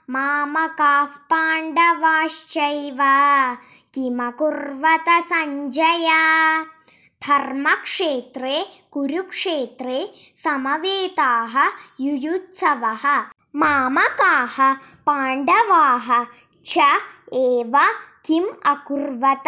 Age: 20-39